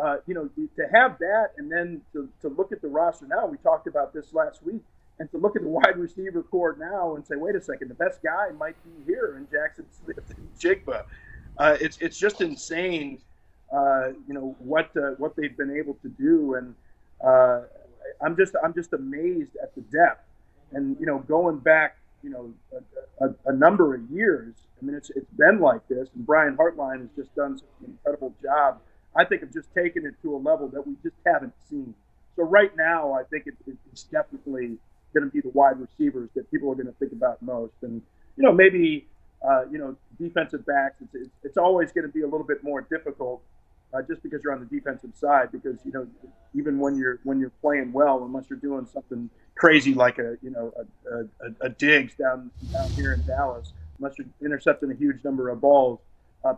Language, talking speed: English, 210 wpm